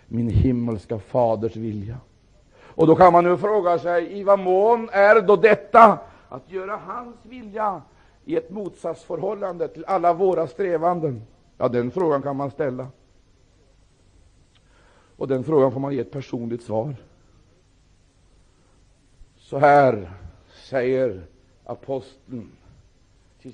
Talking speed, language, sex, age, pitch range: 120 wpm, Swedish, male, 60-79, 95-145 Hz